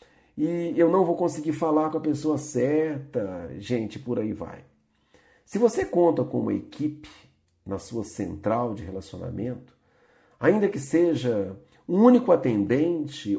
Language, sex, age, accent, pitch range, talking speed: Portuguese, male, 50-69, Brazilian, 110-170 Hz, 140 wpm